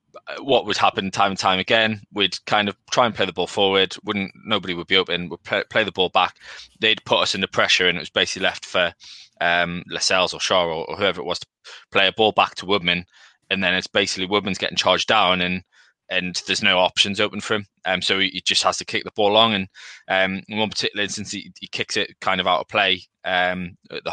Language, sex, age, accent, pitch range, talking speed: English, male, 20-39, British, 95-110 Hz, 250 wpm